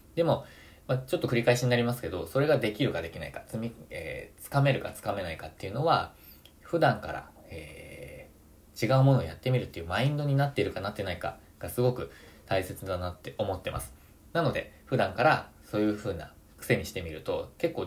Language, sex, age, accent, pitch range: Japanese, male, 20-39, native, 90-130 Hz